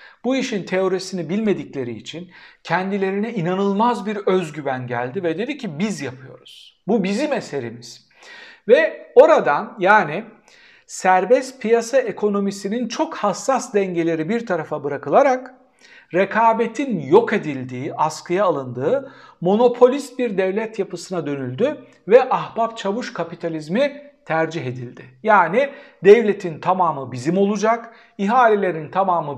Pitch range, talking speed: 170-235 Hz, 110 wpm